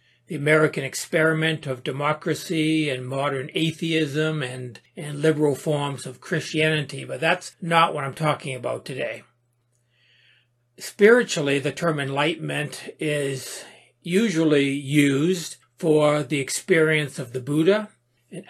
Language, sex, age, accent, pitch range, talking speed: English, male, 60-79, American, 135-170 Hz, 115 wpm